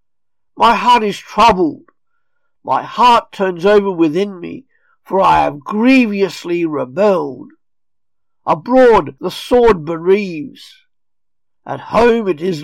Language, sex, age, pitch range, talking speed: English, male, 50-69, 170-235 Hz, 110 wpm